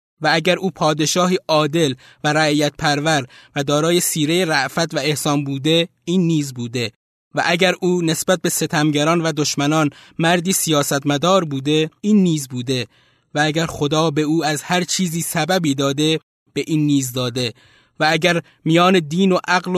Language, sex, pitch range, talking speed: Persian, male, 145-185 Hz, 160 wpm